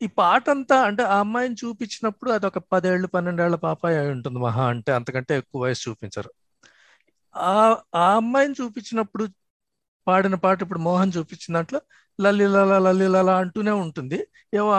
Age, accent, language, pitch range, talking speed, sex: 50-69, native, Telugu, 170-220 Hz, 140 wpm, male